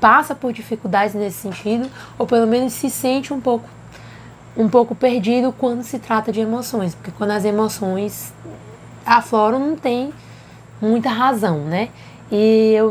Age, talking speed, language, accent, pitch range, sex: 20-39, 150 wpm, Portuguese, Brazilian, 220-265 Hz, female